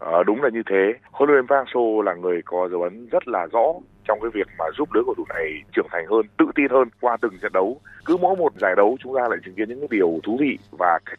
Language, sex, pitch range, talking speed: Vietnamese, male, 110-165 Hz, 280 wpm